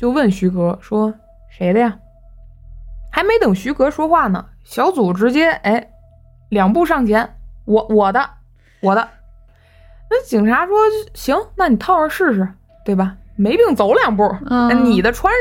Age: 20-39